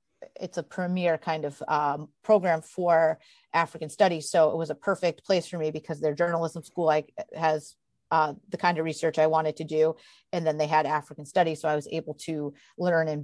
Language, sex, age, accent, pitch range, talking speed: English, female, 30-49, American, 155-185 Hz, 205 wpm